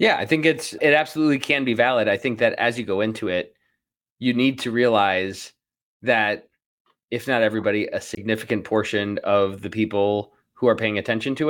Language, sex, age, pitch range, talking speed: English, male, 20-39, 110-140 Hz, 190 wpm